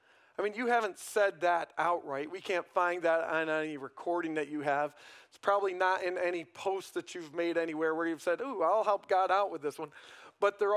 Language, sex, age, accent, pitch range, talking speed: English, male, 40-59, American, 165-225 Hz, 225 wpm